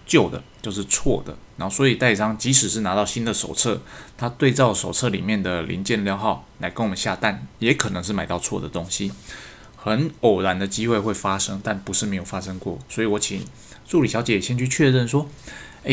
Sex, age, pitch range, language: male, 20-39, 95-120 Hz, Chinese